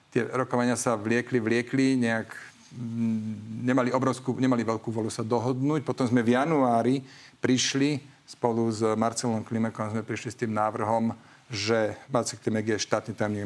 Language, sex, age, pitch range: Slovak, male, 40-59, 115-135 Hz